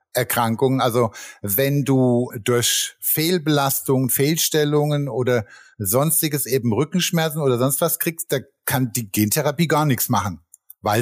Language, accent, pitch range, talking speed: German, German, 115-150 Hz, 125 wpm